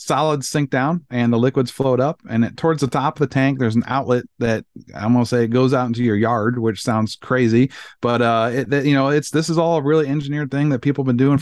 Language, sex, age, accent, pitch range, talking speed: English, male, 40-59, American, 115-145 Hz, 270 wpm